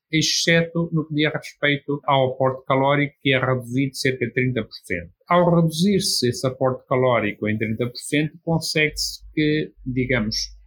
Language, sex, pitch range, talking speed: Portuguese, male, 120-150 Hz, 135 wpm